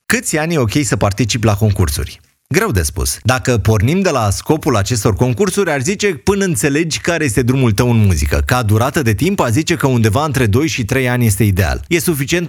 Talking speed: 215 wpm